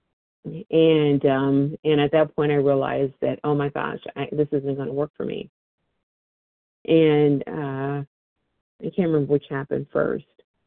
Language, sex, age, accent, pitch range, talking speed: English, female, 40-59, American, 135-165 Hz, 155 wpm